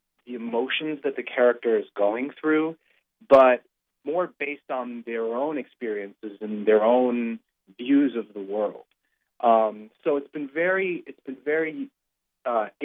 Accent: American